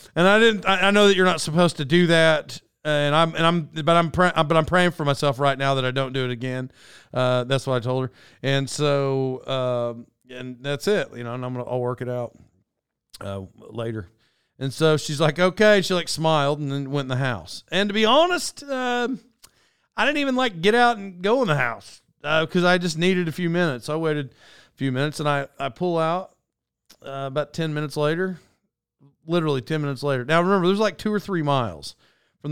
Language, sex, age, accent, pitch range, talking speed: English, male, 40-59, American, 130-175 Hz, 225 wpm